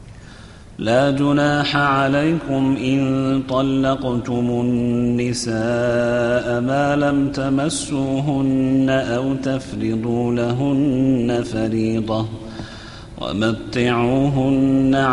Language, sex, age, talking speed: Arabic, male, 40-59, 55 wpm